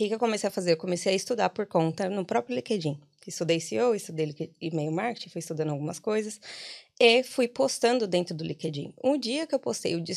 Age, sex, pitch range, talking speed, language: 20-39, female, 165-220 Hz, 210 wpm, Portuguese